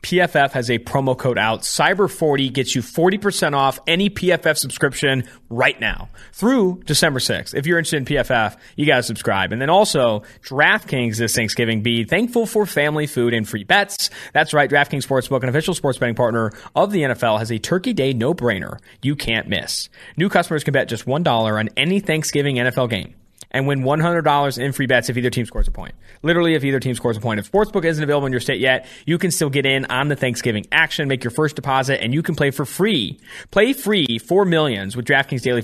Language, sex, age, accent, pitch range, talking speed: English, male, 30-49, American, 120-160 Hz, 210 wpm